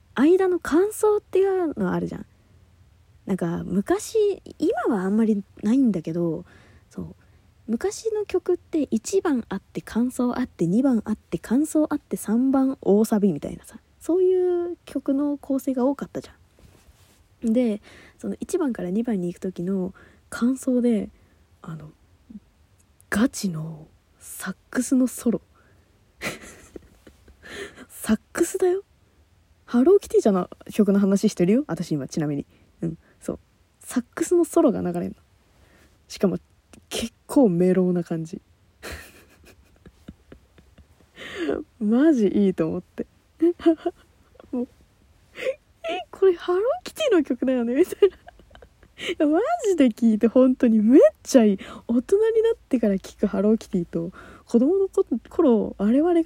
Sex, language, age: female, Japanese, 20-39